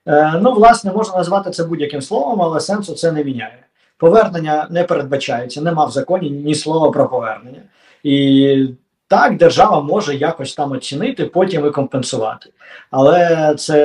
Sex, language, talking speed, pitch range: male, Ukrainian, 150 wpm, 135-175 Hz